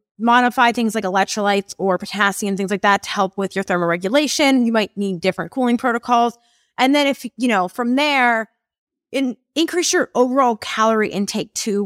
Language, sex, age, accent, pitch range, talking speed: English, female, 20-39, American, 185-245 Hz, 170 wpm